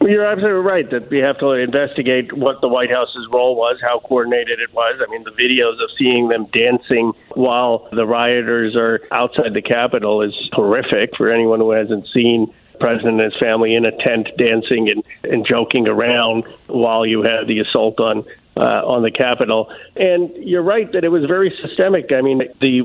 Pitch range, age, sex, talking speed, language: 120-150 Hz, 50-69, male, 190 wpm, English